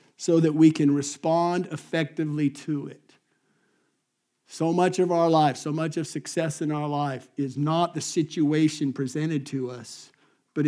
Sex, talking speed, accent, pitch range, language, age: male, 155 wpm, American, 140-170 Hz, English, 50-69